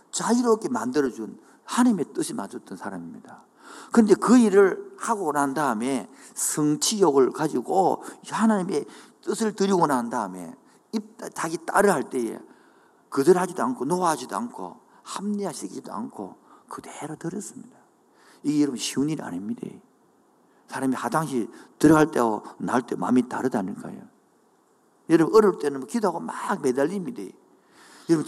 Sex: male